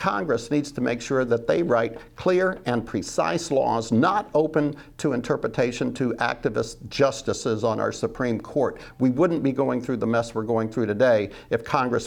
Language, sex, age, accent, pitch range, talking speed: English, male, 50-69, American, 125-160 Hz, 180 wpm